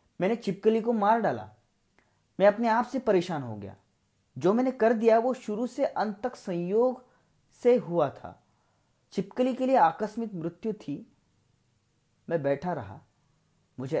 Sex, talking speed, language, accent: male, 150 wpm, Hindi, native